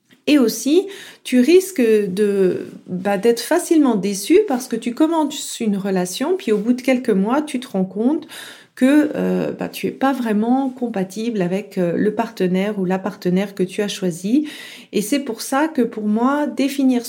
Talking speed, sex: 180 wpm, female